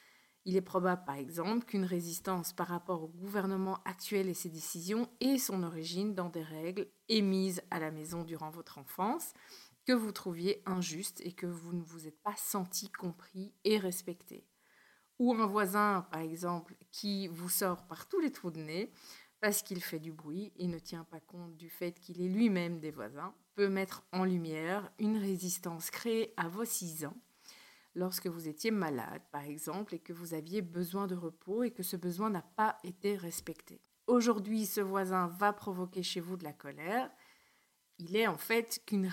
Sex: female